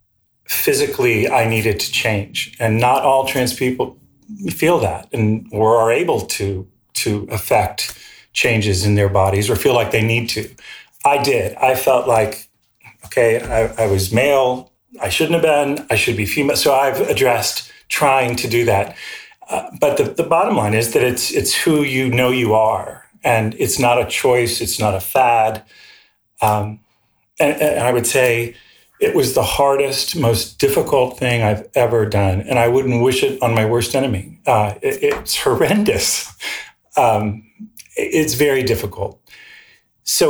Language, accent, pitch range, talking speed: English, American, 105-135 Hz, 165 wpm